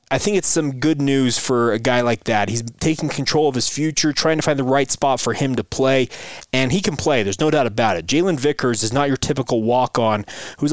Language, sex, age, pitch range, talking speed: English, male, 20-39, 120-150 Hz, 245 wpm